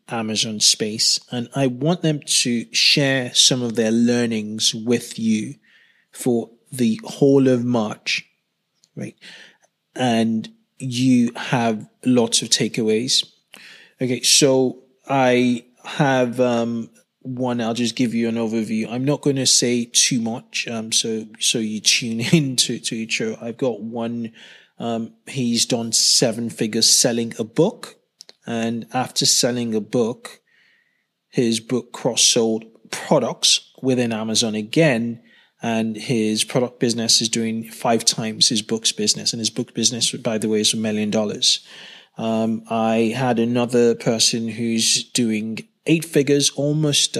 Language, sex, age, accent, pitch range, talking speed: English, male, 20-39, British, 115-130 Hz, 135 wpm